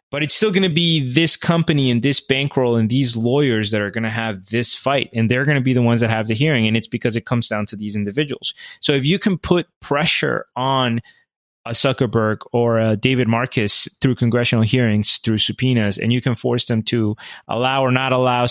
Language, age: English, 20-39